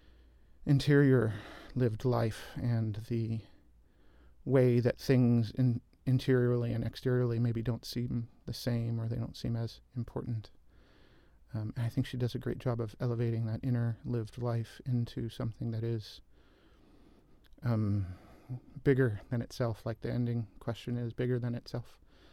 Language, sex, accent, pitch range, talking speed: English, male, American, 110-125 Hz, 145 wpm